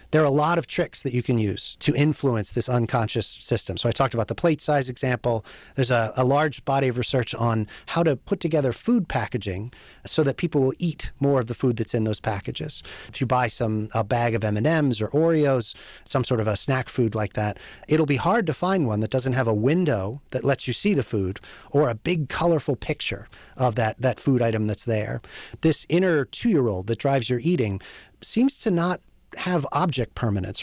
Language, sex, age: English, male, 30-49